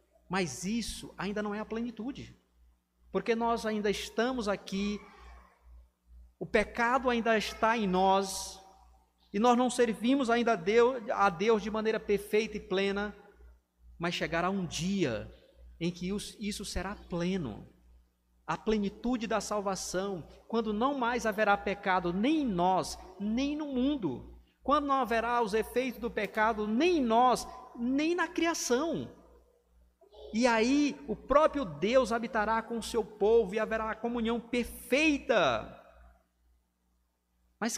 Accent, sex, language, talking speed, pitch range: Brazilian, male, Portuguese, 135 wpm, 160-235 Hz